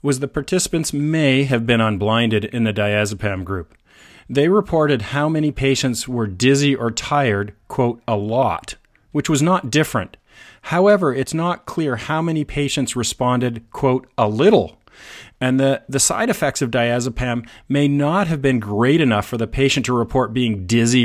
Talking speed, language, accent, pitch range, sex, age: 165 wpm, English, American, 115-145 Hz, male, 40-59